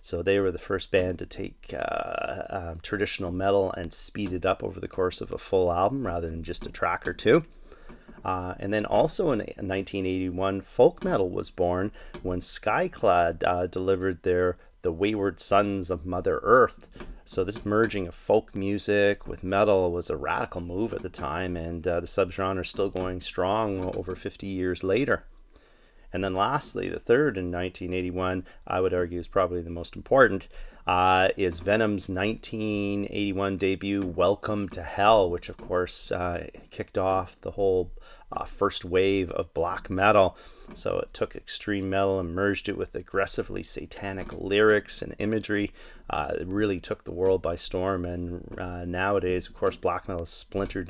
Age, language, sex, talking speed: 30-49, English, male, 170 wpm